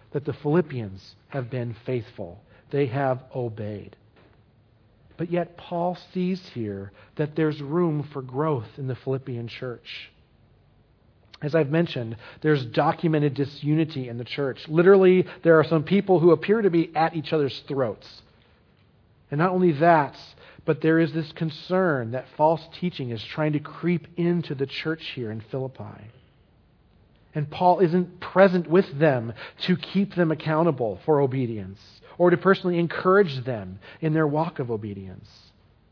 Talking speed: 150 wpm